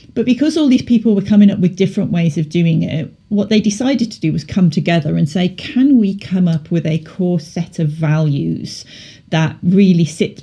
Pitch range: 155-180 Hz